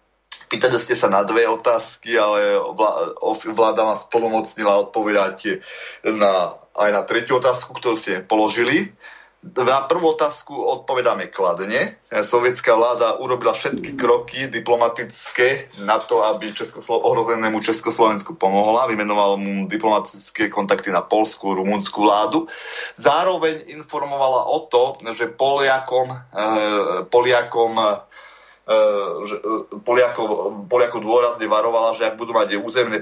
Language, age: Slovak, 30-49